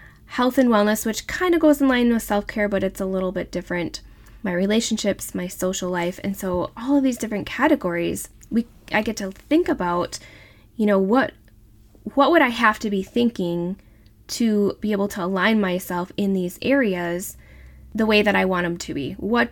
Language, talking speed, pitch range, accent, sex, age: English, 195 wpm, 180-225 Hz, American, female, 10-29